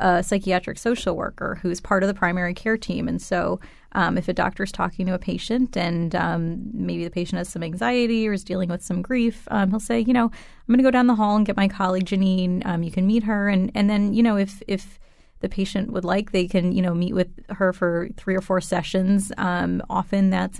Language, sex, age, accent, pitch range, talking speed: English, female, 30-49, American, 180-215 Hz, 250 wpm